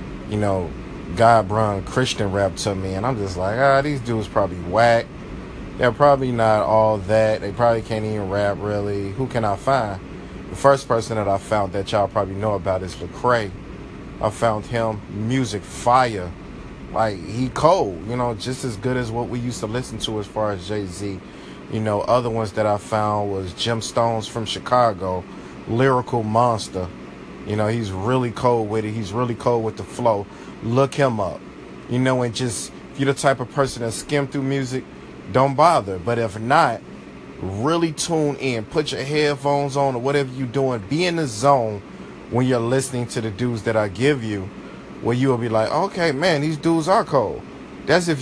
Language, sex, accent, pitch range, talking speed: English, male, American, 105-130 Hz, 195 wpm